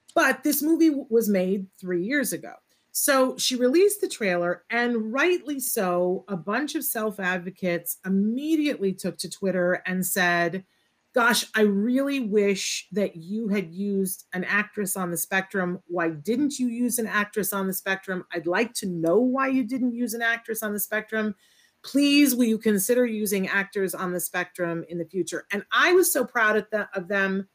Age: 40-59